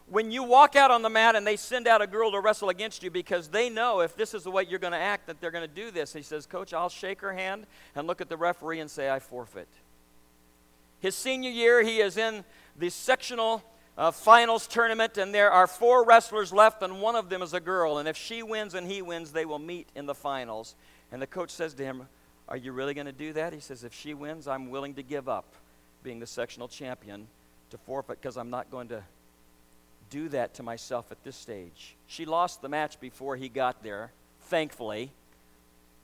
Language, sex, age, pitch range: English, male, 50-69, 110-180 Hz